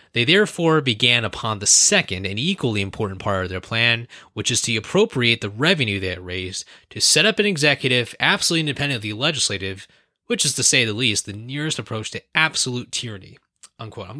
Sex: male